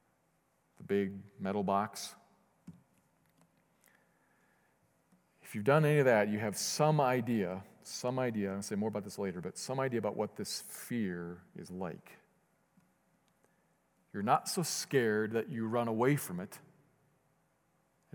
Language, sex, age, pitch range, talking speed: English, male, 40-59, 110-150 Hz, 140 wpm